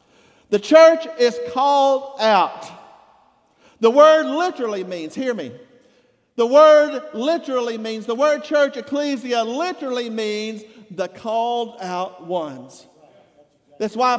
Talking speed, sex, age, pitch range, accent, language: 115 wpm, male, 50-69, 215-275 Hz, American, English